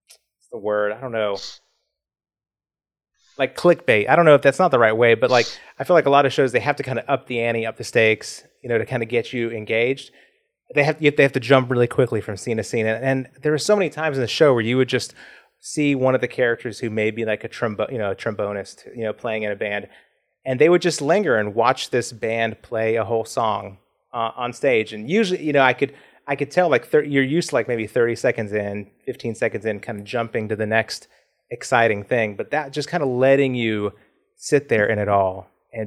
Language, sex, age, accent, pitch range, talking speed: English, male, 30-49, American, 110-140 Hz, 250 wpm